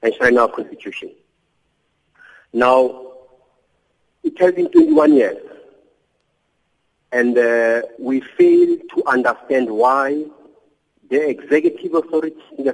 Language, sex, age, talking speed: English, male, 50-69, 105 wpm